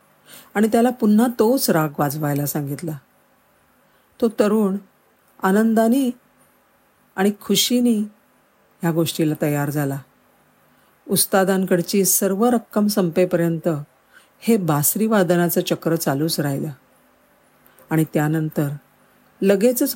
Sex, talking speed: female, 85 wpm